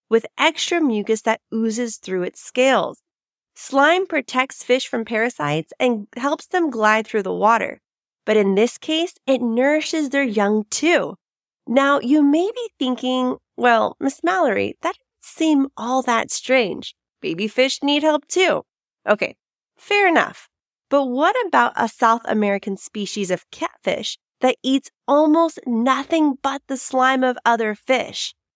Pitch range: 220-295 Hz